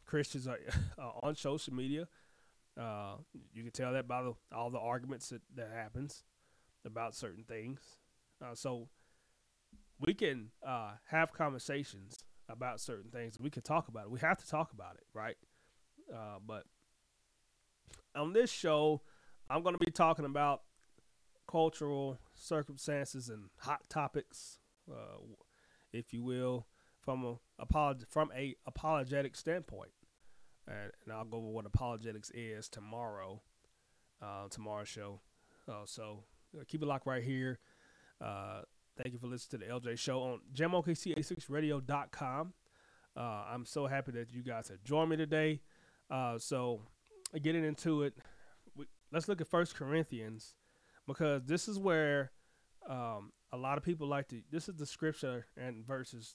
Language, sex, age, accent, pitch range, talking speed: English, male, 30-49, American, 115-150 Hz, 145 wpm